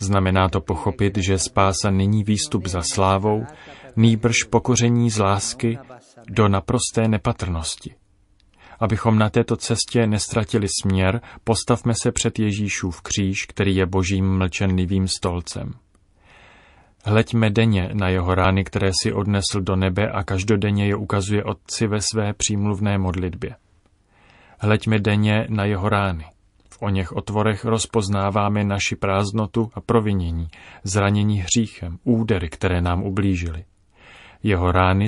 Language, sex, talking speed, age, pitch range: Czech, male, 125 wpm, 30-49, 95-110 Hz